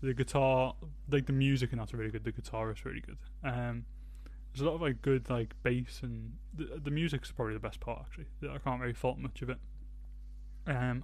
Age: 20-39